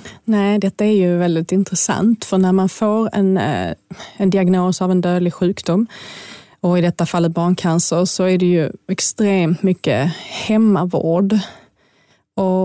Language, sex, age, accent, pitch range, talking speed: Swedish, female, 20-39, native, 175-200 Hz, 140 wpm